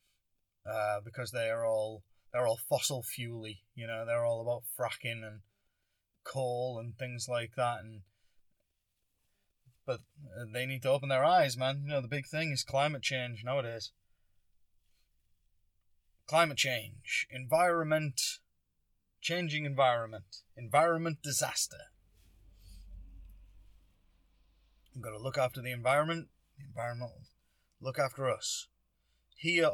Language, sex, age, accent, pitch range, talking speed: English, male, 20-39, British, 95-140 Hz, 120 wpm